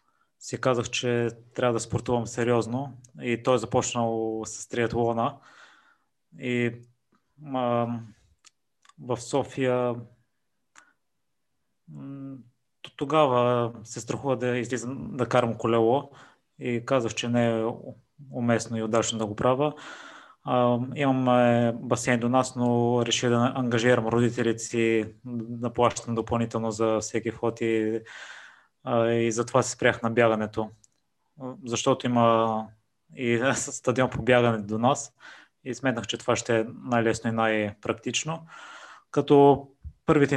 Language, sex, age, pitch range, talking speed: Bulgarian, male, 20-39, 115-125 Hz, 115 wpm